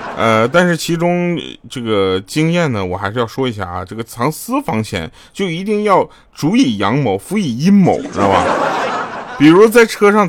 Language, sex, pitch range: Chinese, male, 110-155 Hz